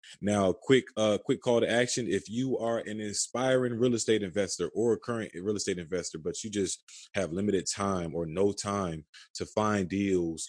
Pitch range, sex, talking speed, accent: 90-110 Hz, male, 190 wpm, American